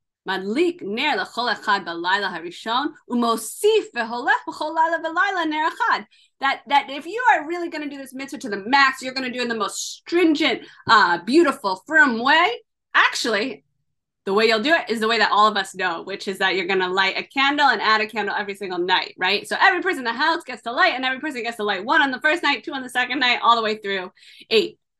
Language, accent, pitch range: English, American, 205-320 Hz